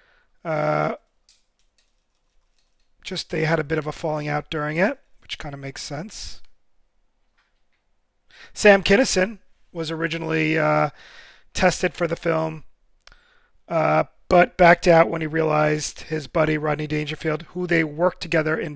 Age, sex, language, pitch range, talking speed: 30-49, male, English, 155-175 Hz, 135 wpm